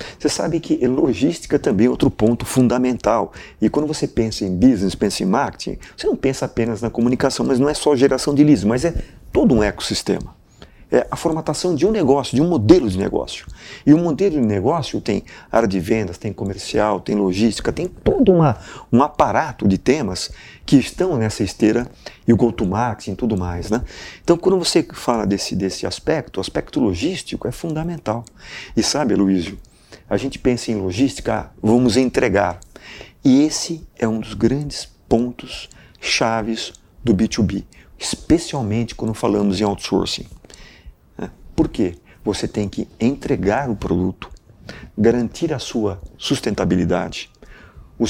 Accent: Brazilian